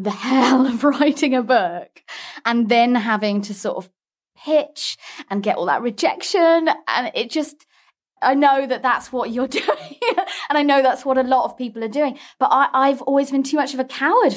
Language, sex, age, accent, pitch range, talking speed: English, female, 20-39, British, 205-280 Hz, 200 wpm